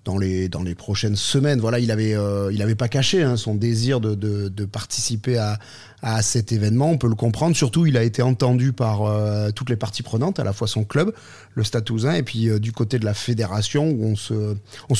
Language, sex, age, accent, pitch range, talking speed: French, male, 30-49, French, 110-135 Hz, 230 wpm